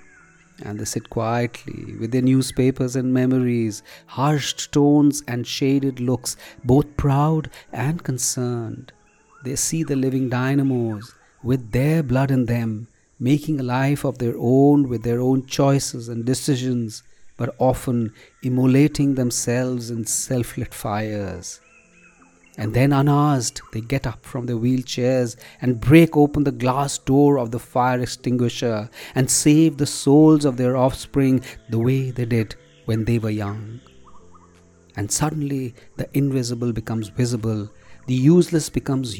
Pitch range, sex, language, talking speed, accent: 115-140 Hz, male, English, 140 wpm, Indian